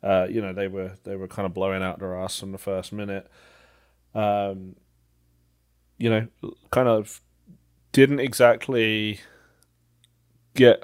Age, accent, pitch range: 20-39, British, 100-115 Hz